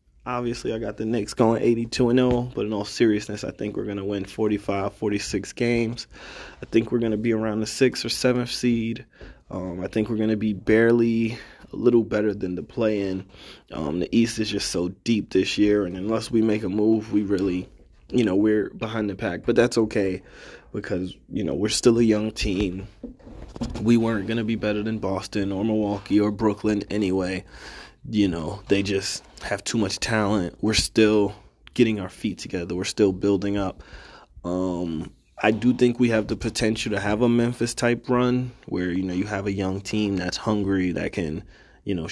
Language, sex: English, male